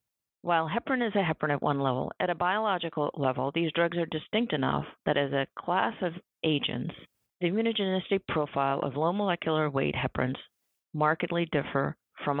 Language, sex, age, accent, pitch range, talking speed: English, female, 50-69, American, 135-175 Hz, 155 wpm